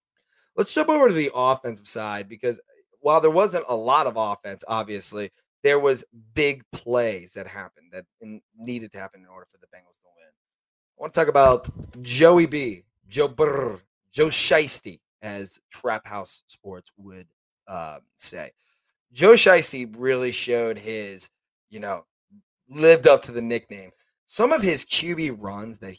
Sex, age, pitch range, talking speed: male, 30-49, 105-150 Hz, 160 wpm